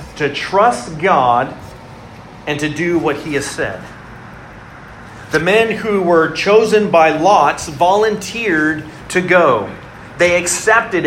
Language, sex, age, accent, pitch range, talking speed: English, male, 40-59, American, 145-195 Hz, 120 wpm